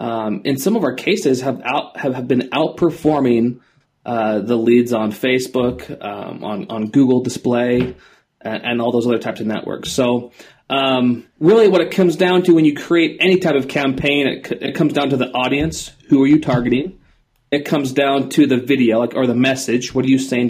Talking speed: 205 wpm